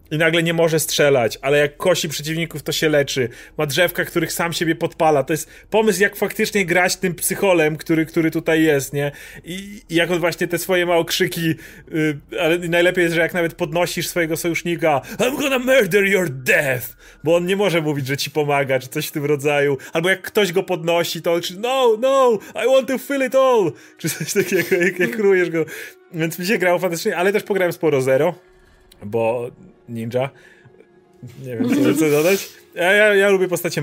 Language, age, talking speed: Polish, 30-49, 195 wpm